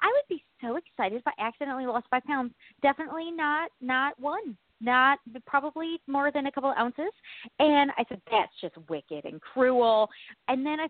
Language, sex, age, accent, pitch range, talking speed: English, female, 30-49, American, 230-330 Hz, 180 wpm